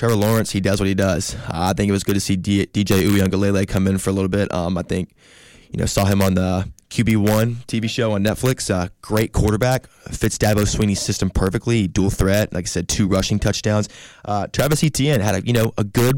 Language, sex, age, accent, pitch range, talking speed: English, male, 20-39, American, 95-115 Hz, 225 wpm